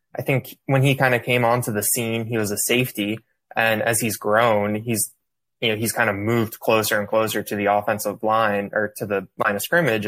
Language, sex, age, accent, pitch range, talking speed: English, male, 20-39, American, 105-115 Hz, 225 wpm